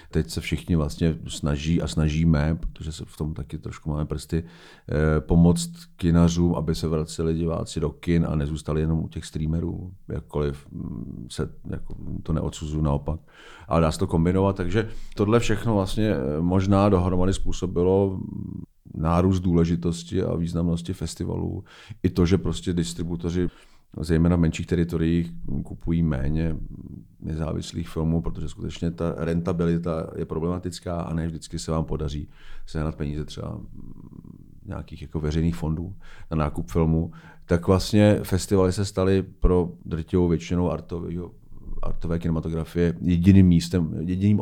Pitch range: 80-90 Hz